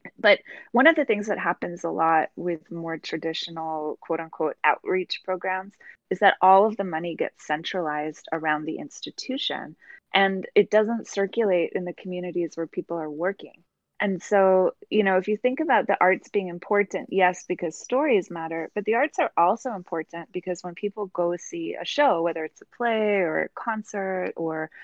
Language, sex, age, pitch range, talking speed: English, female, 20-39, 170-205 Hz, 180 wpm